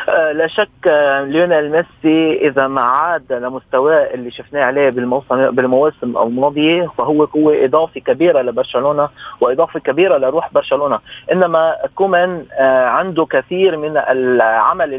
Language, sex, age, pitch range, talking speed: Arabic, male, 30-49, 140-185 Hz, 110 wpm